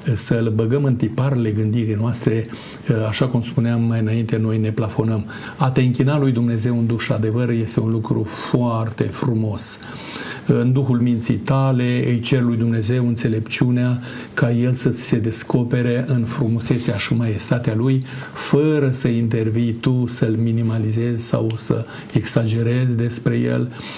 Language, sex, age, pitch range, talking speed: Romanian, male, 50-69, 110-135 Hz, 145 wpm